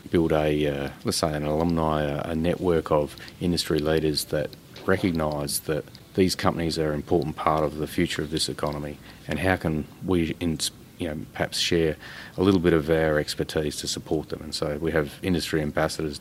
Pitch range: 75-85 Hz